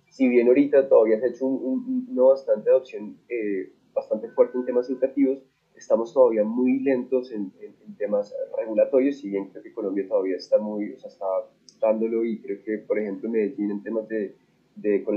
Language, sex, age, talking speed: Spanish, male, 20-39, 200 wpm